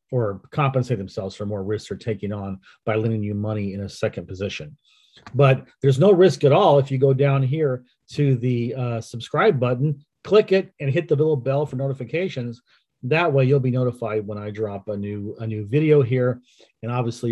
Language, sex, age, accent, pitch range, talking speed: English, male, 40-59, American, 110-140 Hz, 200 wpm